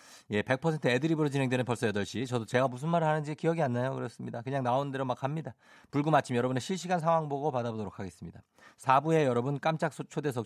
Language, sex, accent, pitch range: Korean, male, native, 95-135 Hz